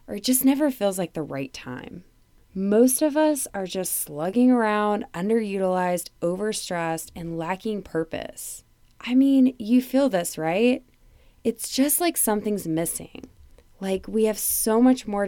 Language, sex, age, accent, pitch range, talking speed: English, female, 20-39, American, 170-230 Hz, 150 wpm